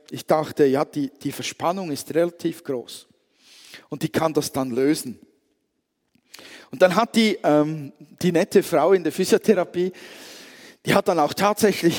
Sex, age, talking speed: male, 50-69, 150 wpm